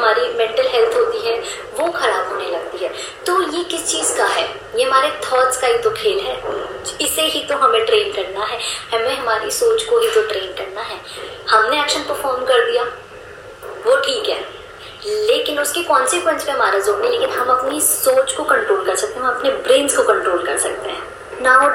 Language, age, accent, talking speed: Hindi, 20-39, native, 70 wpm